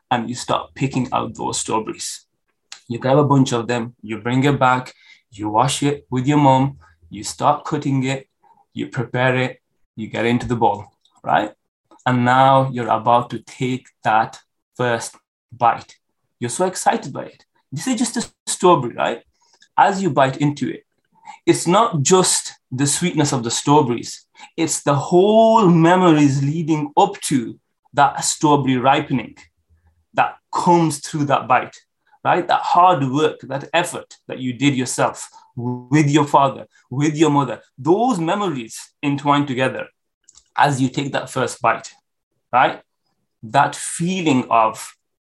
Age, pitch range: 20-39, 125-160 Hz